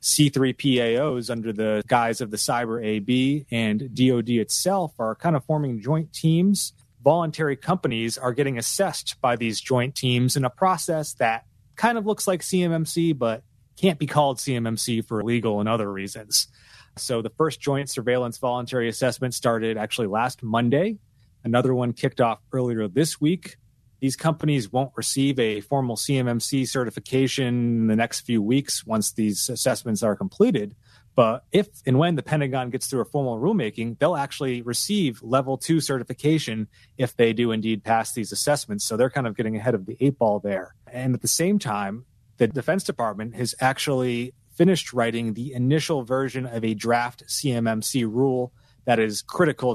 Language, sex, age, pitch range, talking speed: English, male, 30-49, 115-140 Hz, 170 wpm